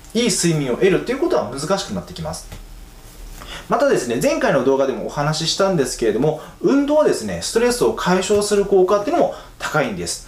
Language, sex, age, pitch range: Japanese, male, 20-39, 125-210 Hz